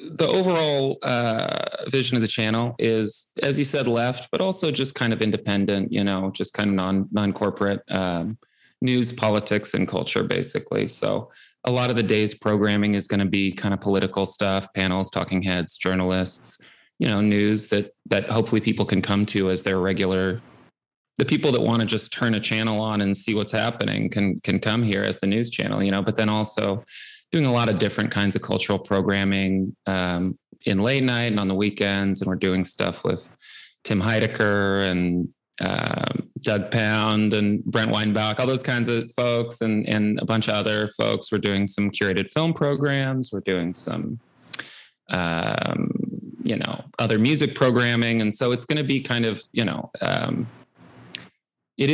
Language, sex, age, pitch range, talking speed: English, male, 20-39, 100-115 Hz, 185 wpm